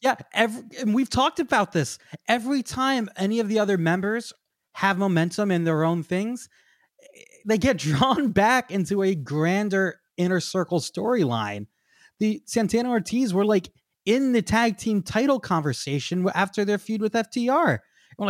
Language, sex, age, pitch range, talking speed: English, male, 20-39, 145-210 Hz, 155 wpm